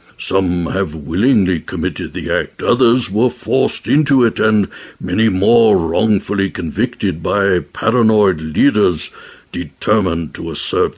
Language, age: English, 60-79